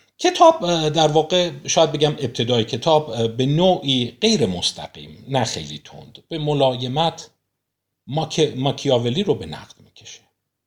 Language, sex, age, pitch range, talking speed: Persian, male, 50-69, 105-150 Hz, 125 wpm